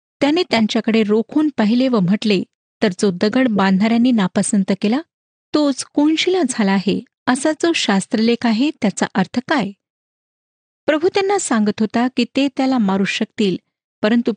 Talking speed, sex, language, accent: 140 wpm, female, Marathi, native